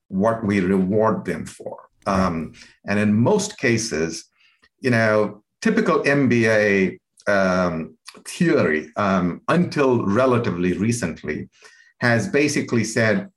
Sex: male